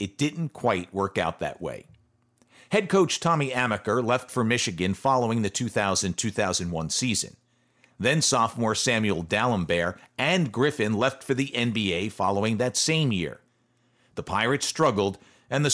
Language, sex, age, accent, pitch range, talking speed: English, male, 50-69, American, 105-140 Hz, 135 wpm